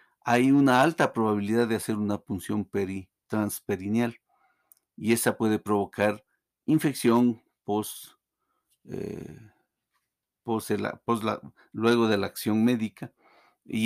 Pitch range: 105-125 Hz